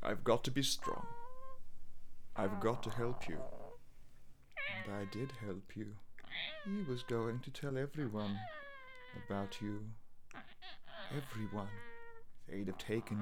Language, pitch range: English, 100-125 Hz